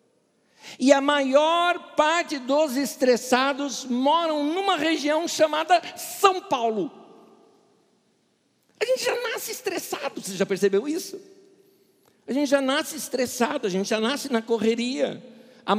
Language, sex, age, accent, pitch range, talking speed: Portuguese, male, 60-79, Brazilian, 210-310 Hz, 125 wpm